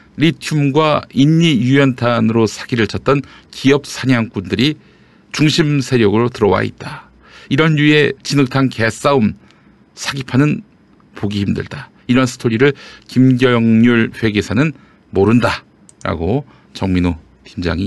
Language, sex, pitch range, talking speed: English, male, 95-140 Hz, 85 wpm